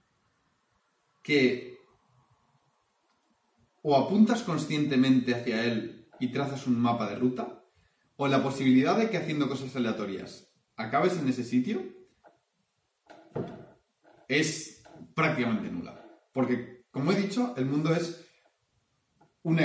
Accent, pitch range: Spanish, 115-145 Hz